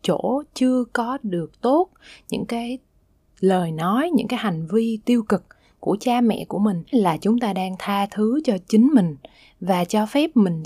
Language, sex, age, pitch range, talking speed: Vietnamese, female, 20-39, 175-230 Hz, 185 wpm